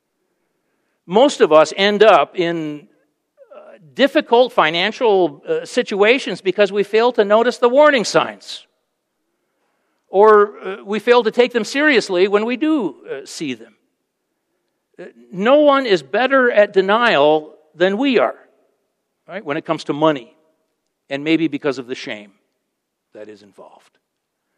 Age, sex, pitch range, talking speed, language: 60-79, male, 155-265 Hz, 140 wpm, English